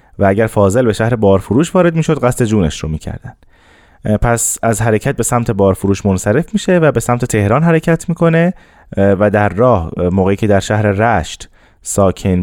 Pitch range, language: 95-125 Hz, Persian